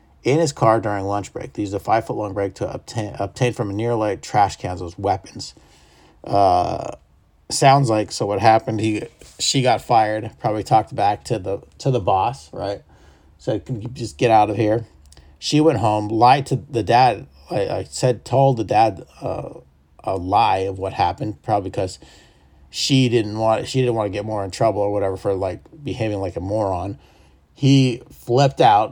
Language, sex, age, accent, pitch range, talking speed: English, male, 40-59, American, 95-120 Hz, 195 wpm